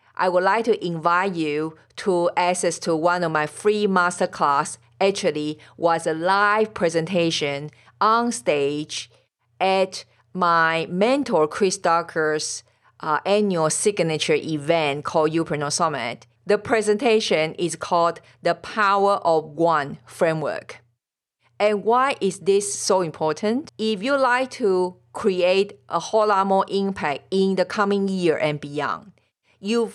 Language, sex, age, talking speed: English, female, 50-69, 130 wpm